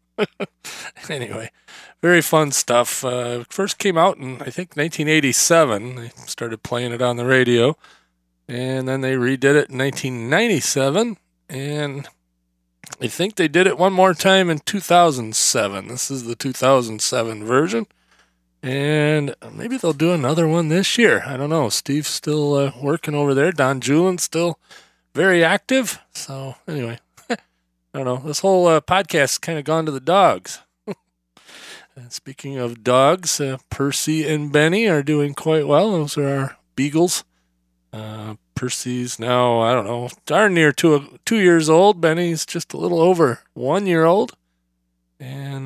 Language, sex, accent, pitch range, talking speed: English, male, American, 125-165 Hz, 150 wpm